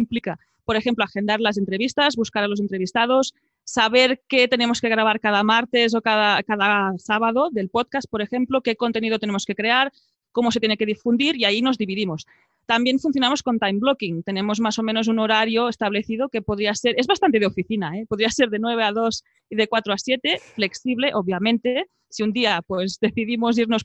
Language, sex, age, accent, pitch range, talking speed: Spanish, female, 20-39, Spanish, 205-250 Hz, 195 wpm